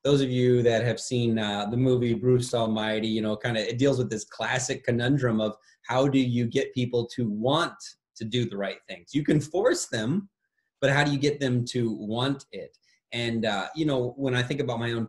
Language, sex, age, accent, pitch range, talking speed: English, male, 30-49, American, 110-135 Hz, 225 wpm